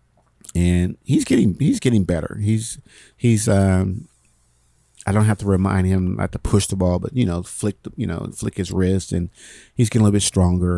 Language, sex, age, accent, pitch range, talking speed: English, male, 50-69, American, 90-105 Hz, 200 wpm